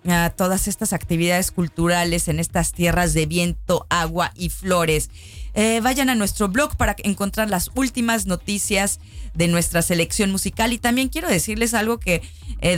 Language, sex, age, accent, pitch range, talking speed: Polish, female, 30-49, Mexican, 160-210 Hz, 160 wpm